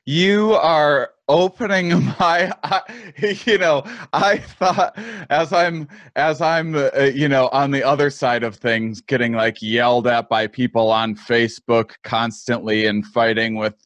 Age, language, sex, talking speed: 20-39, English, male, 145 wpm